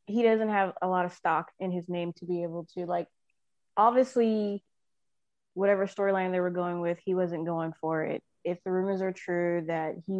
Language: English